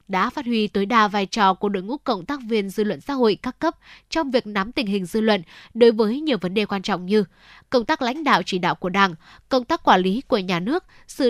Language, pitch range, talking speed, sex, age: Vietnamese, 200-250 Hz, 265 wpm, female, 10-29